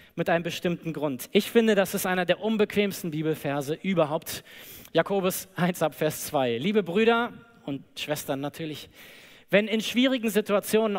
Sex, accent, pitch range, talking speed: male, German, 165-210 Hz, 140 wpm